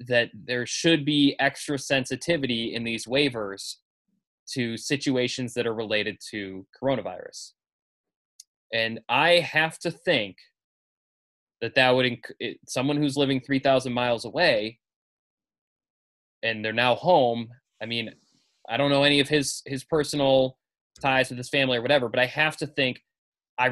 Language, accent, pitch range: English, American, 115-140 Hz